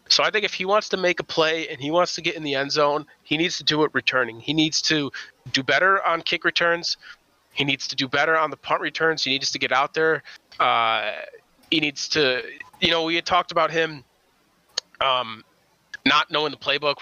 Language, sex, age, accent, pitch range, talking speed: English, male, 30-49, American, 130-160 Hz, 225 wpm